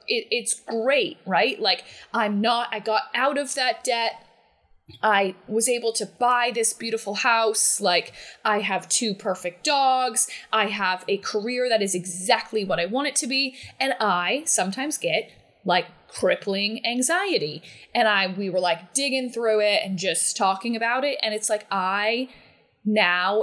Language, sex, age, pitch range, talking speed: English, female, 20-39, 185-235 Hz, 165 wpm